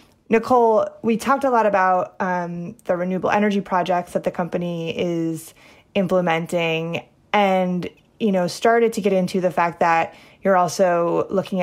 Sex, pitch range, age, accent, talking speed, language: female, 175-215 Hz, 20-39, American, 150 wpm, English